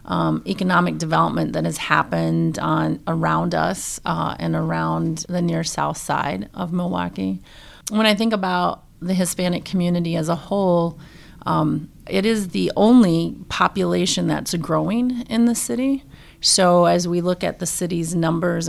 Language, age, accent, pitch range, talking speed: English, 30-49, American, 155-185 Hz, 150 wpm